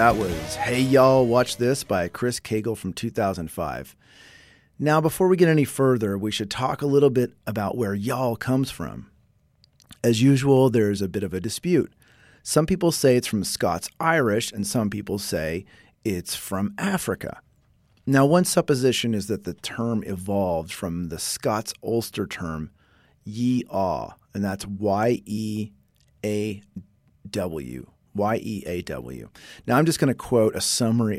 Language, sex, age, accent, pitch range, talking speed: English, male, 40-59, American, 95-125 Hz, 145 wpm